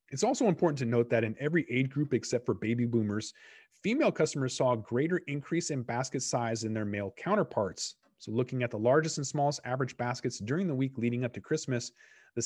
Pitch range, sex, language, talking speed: 115-155 Hz, male, English, 210 wpm